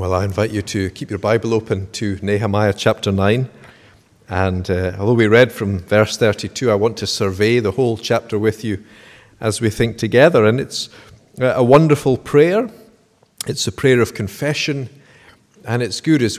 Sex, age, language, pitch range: male, 50-69, English, 105-130 Hz